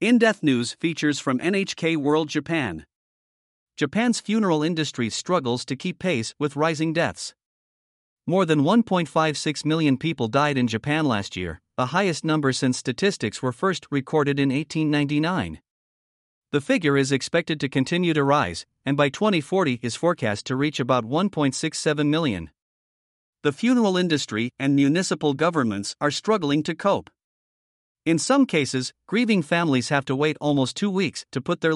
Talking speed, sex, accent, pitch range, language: 150 wpm, male, American, 130-175 Hz, English